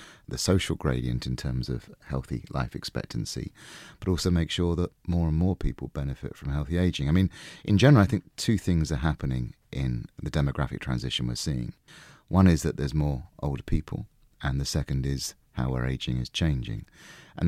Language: English